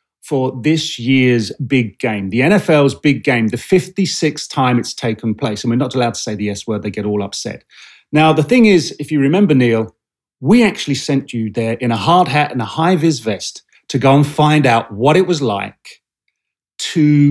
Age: 30-49